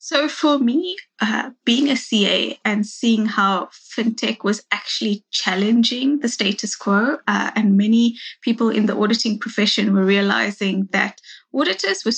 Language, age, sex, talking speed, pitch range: English, 20-39, female, 150 wpm, 205-235 Hz